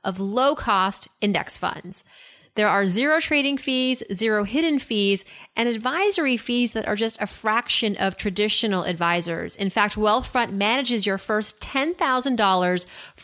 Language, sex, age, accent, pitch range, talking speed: English, female, 30-49, American, 180-235 Hz, 135 wpm